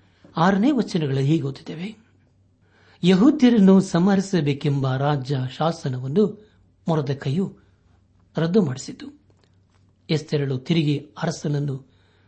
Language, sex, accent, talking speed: Kannada, male, native, 70 wpm